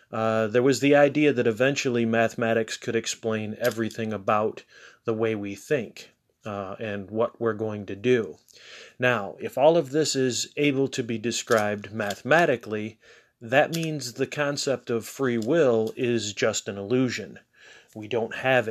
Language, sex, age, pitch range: English, male, 30-49, 110-130 Hz